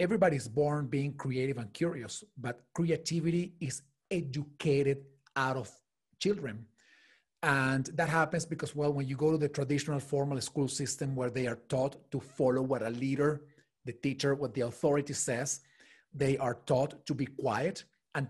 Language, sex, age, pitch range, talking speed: English, male, 40-59, 135-155 Hz, 160 wpm